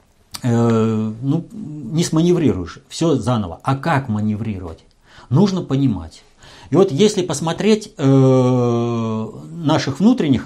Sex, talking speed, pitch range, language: male, 100 wpm, 105-150 Hz, Russian